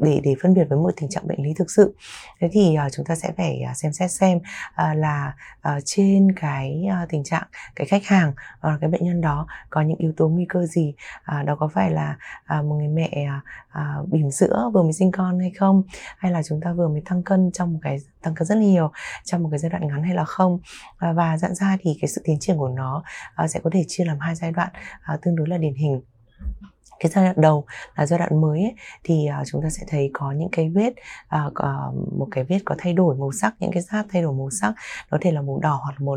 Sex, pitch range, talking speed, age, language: female, 150-185 Hz, 255 wpm, 20-39, Vietnamese